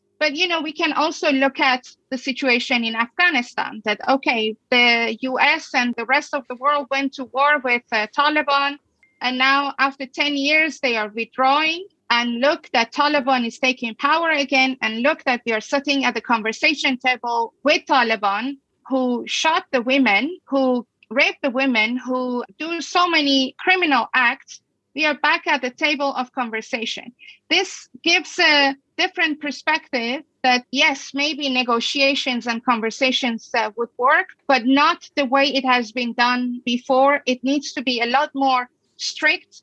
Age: 30-49